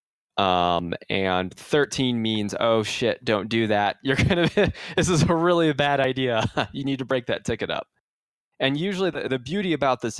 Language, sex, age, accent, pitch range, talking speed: English, male, 20-39, American, 100-130 Hz, 180 wpm